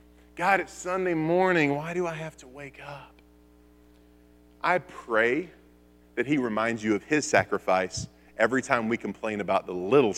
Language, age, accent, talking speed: English, 40-59, American, 160 wpm